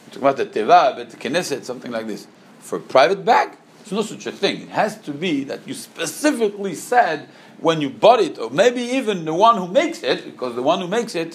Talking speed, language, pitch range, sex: 235 wpm, English, 130-205 Hz, male